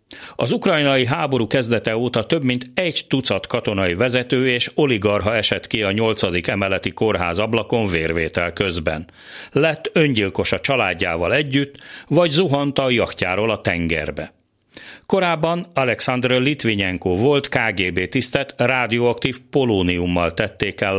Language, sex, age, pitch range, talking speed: Hungarian, male, 40-59, 95-140 Hz, 120 wpm